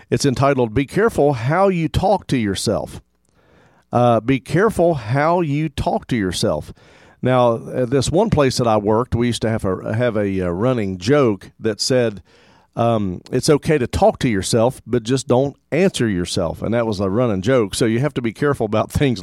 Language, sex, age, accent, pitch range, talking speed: English, male, 50-69, American, 105-135 Hz, 195 wpm